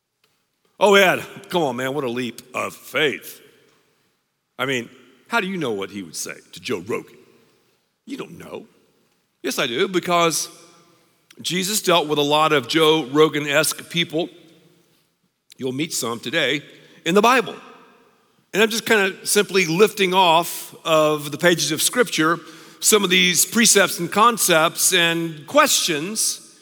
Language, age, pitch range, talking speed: English, 50-69, 155-210 Hz, 150 wpm